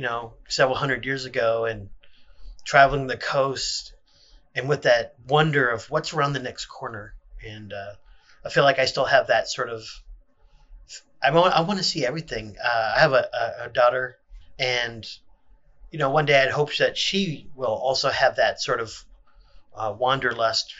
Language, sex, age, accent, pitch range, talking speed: English, male, 30-49, American, 115-150 Hz, 180 wpm